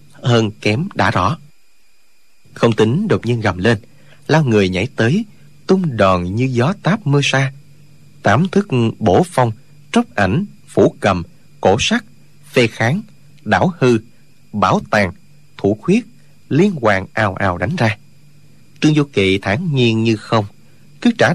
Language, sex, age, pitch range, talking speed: Vietnamese, male, 30-49, 110-150 Hz, 150 wpm